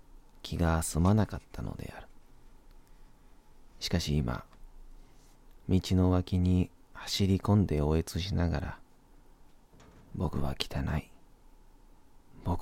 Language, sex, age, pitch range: Japanese, male, 40-59, 80-95 Hz